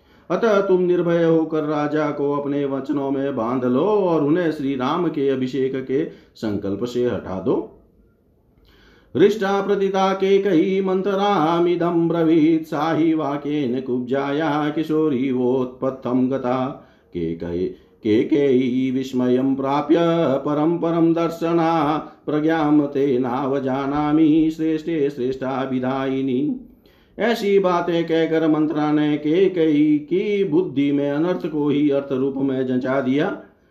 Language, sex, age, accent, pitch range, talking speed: Hindi, male, 50-69, native, 135-170 Hz, 115 wpm